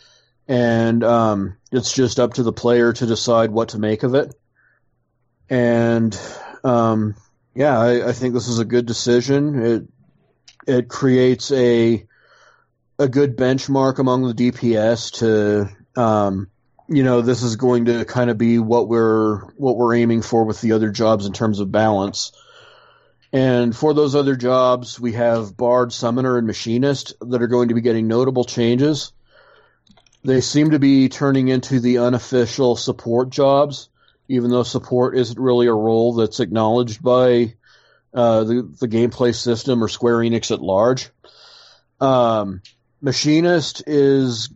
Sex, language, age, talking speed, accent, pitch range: male, English, 30-49, 150 wpm, American, 115-130 Hz